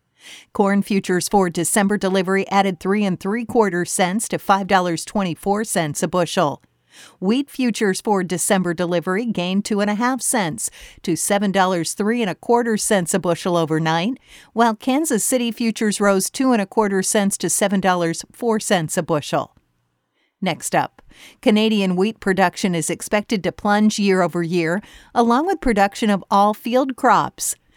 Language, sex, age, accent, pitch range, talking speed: English, female, 50-69, American, 180-225 Hz, 160 wpm